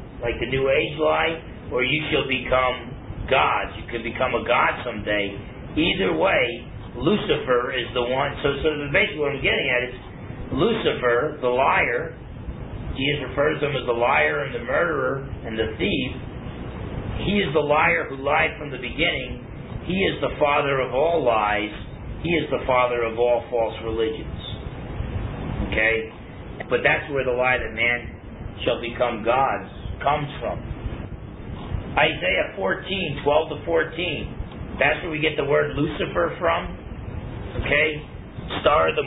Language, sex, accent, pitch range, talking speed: English, male, American, 110-145 Hz, 155 wpm